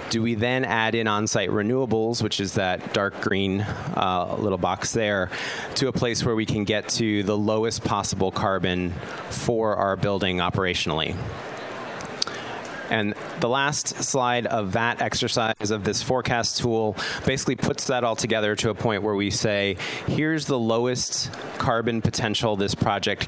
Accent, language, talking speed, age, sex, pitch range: American, English, 155 wpm, 30-49, male, 100-125 Hz